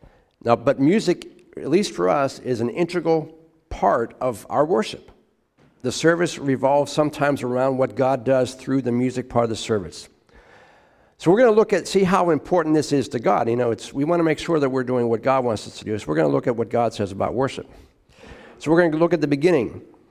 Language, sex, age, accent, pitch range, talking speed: English, male, 50-69, American, 110-160 Hz, 235 wpm